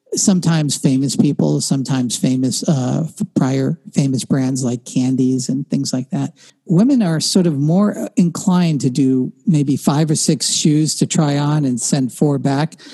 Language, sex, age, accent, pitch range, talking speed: English, male, 50-69, American, 135-185 Hz, 160 wpm